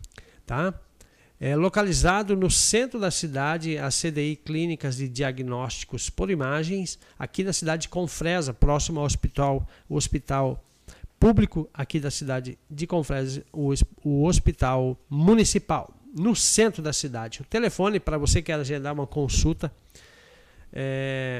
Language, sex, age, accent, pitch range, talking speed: Portuguese, male, 60-79, Brazilian, 140-175 Hz, 135 wpm